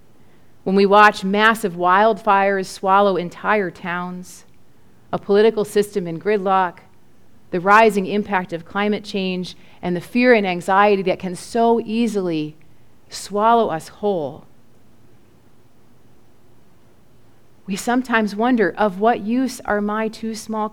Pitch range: 150-225 Hz